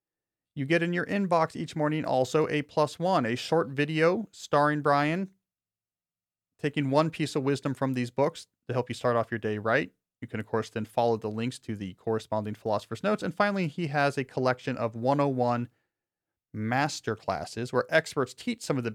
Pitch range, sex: 115-155 Hz, male